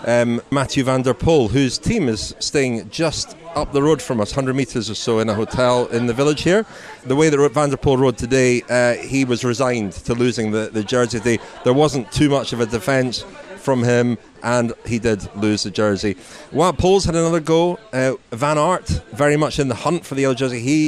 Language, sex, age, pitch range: English, male, 30-49, 120-150 Hz